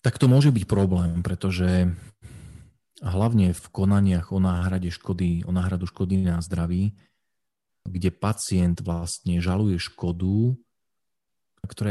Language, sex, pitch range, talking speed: Slovak, male, 90-105 Hz, 115 wpm